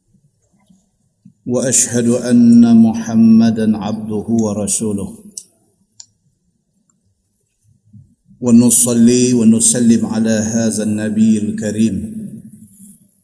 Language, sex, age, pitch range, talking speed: Malay, male, 50-69, 110-170 Hz, 50 wpm